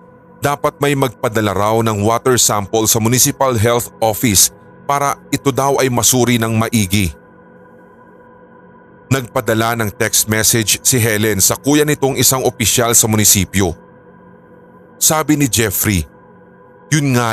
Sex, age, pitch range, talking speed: male, 30-49, 110-135 Hz, 125 wpm